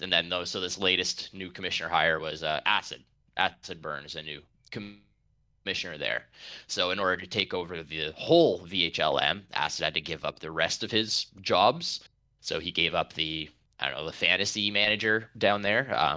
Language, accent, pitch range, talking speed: English, American, 90-110 Hz, 190 wpm